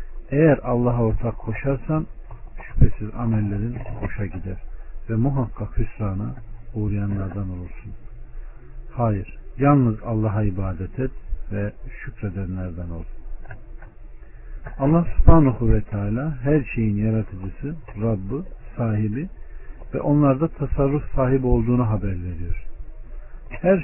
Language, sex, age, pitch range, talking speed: Turkish, male, 60-79, 100-130 Hz, 95 wpm